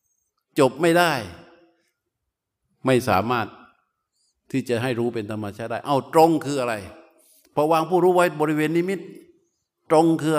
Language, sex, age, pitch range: Thai, male, 60-79, 135-180 Hz